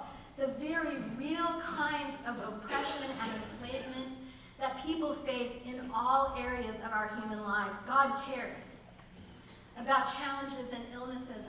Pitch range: 240-290 Hz